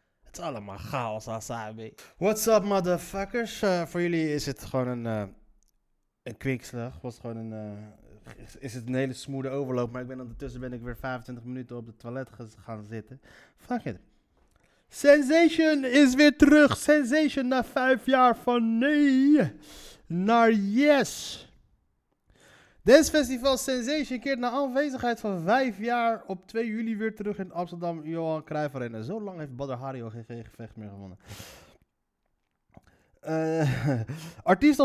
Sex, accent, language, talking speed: male, Dutch, Dutch, 150 wpm